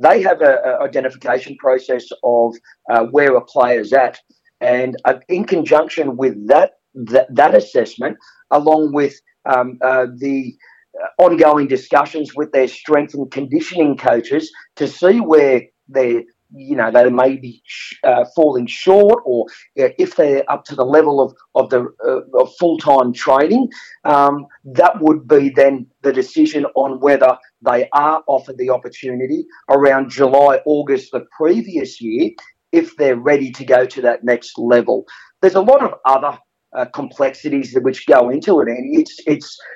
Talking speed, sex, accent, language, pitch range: 150 wpm, male, Australian, English, 130-165 Hz